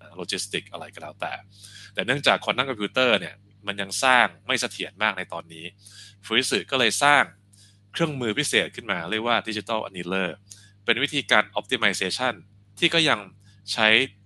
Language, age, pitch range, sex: Thai, 20-39, 95-110 Hz, male